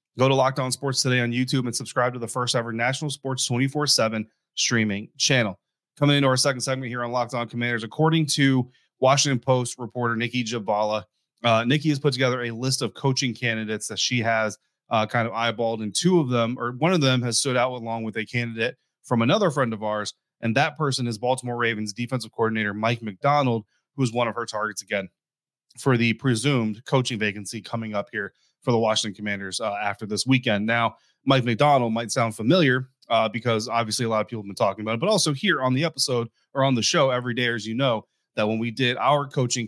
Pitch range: 115-135 Hz